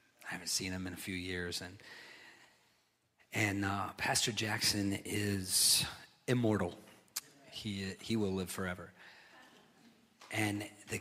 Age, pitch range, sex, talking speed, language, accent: 40-59, 100-120 Hz, male, 120 wpm, English, American